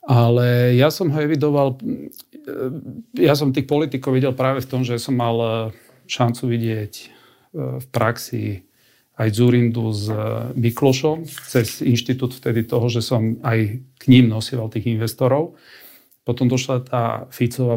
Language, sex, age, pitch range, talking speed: Slovak, male, 40-59, 115-130 Hz, 135 wpm